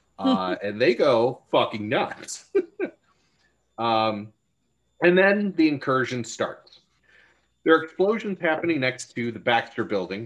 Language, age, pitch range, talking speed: English, 30-49, 105-140 Hz, 125 wpm